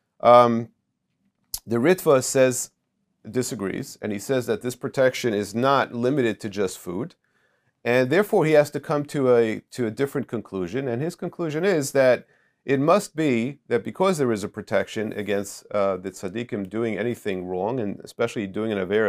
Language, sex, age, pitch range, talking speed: English, male, 40-59, 105-140 Hz, 175 wpm